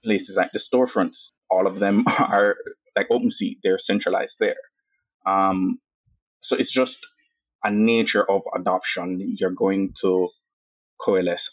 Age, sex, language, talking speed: 20-39, male, English, 135 wpm